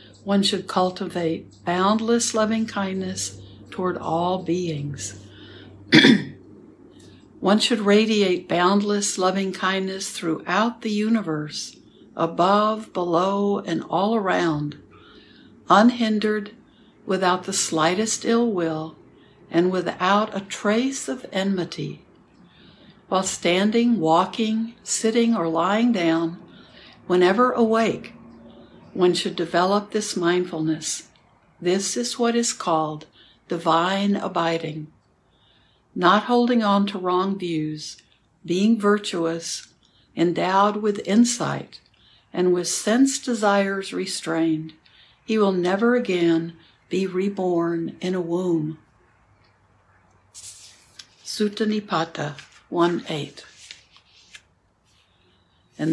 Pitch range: 160-205 Hz